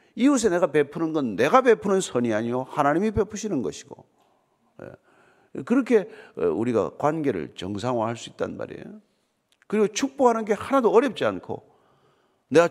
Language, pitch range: Korean, 160-265 Hz